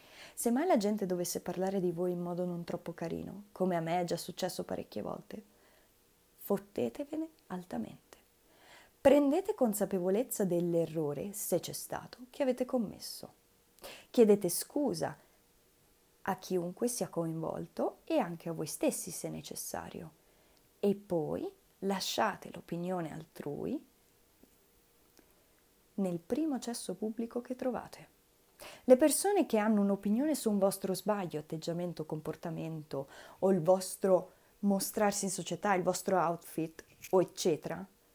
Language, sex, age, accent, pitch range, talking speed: Italian, female, 30-49, native, 175-255 Hz, 125 wpm